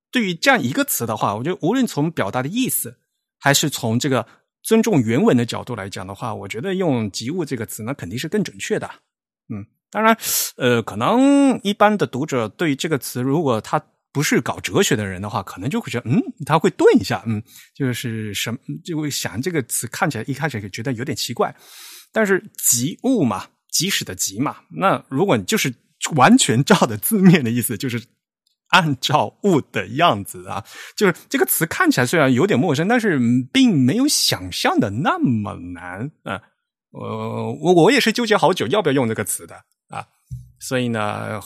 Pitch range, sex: 110-155 Hz, male